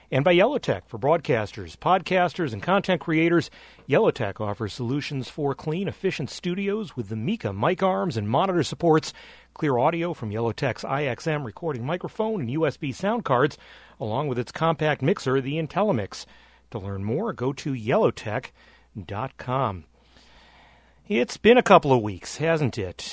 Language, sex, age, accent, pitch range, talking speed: English, male, 40-59, American, 130-175 Hz, 145 wpm